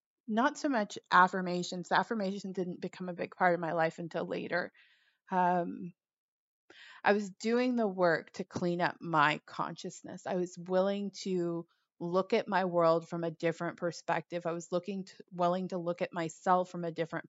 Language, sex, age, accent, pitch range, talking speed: English, female, 30-49, American, 175-205 Hz, 175 wpm